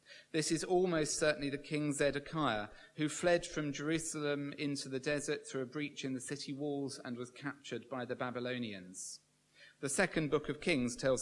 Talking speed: 175 wpm